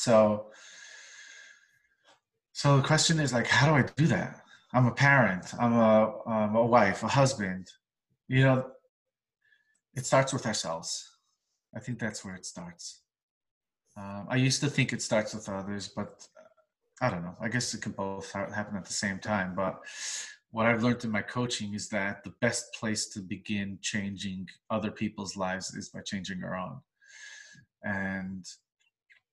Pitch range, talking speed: 100-125 Hz, 165 wpm